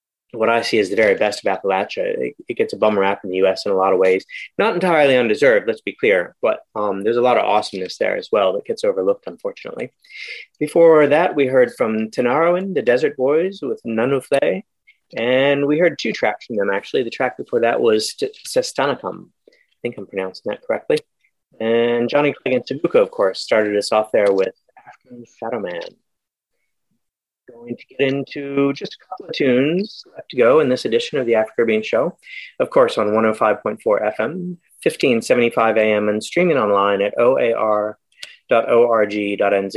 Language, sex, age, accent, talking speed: English, male, 30-49, American, 185 wpm